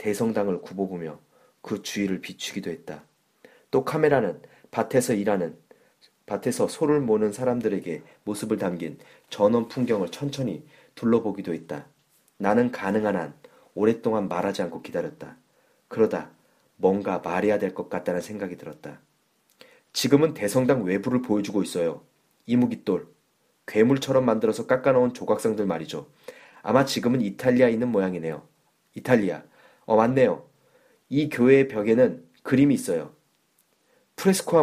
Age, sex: 30-49, male